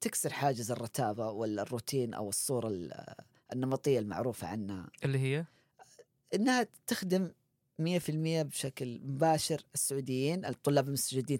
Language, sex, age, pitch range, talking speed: Arabic, female, 30-49, 125-155 Hz, 100 wpm